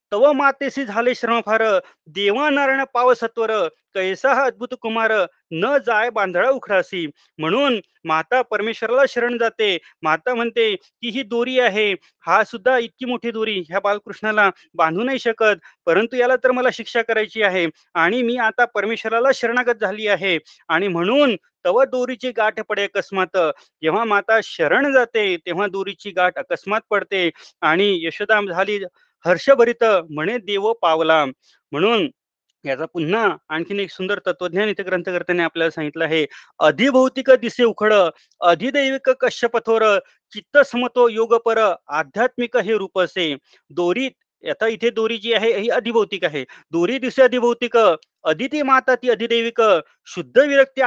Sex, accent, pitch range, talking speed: male, native, 190-245 Hz, 110 wpm